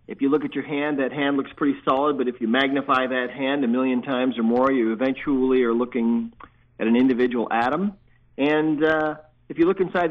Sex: male